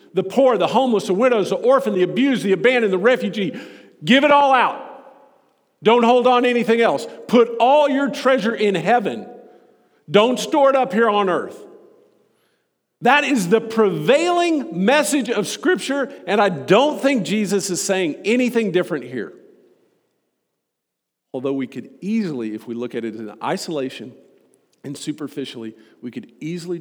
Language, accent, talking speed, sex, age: English, American, 155 wpm, male, 50-69